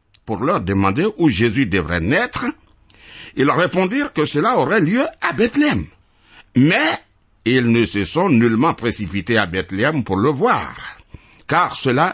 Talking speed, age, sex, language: 150 wpm, 60-79, male, French